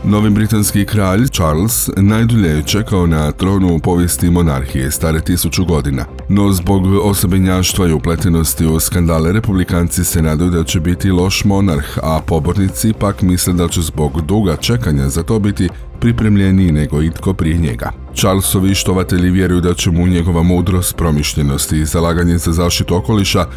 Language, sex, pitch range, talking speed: Croatian, male, 80-95 Hz, 150 wpm